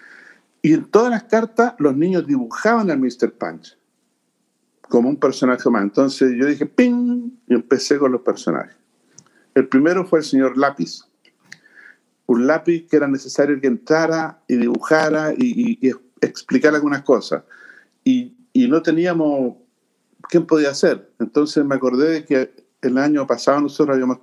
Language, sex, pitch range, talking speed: Spanish, male, 130-170 Hz, 155 wpm